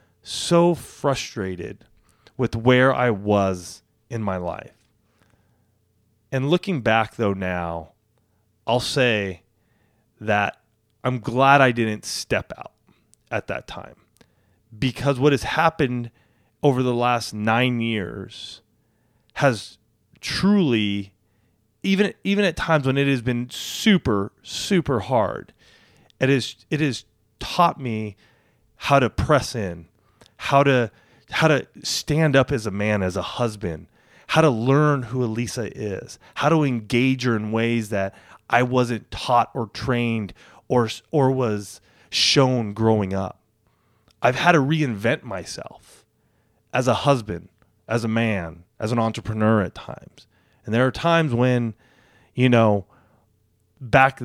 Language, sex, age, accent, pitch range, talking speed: English, male, 30-49, American, 105-130 Hz, 130 wpm